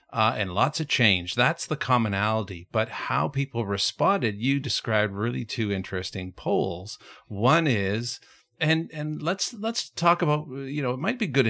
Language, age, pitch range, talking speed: English, 50-69, 100-125 Hz, 165 wpm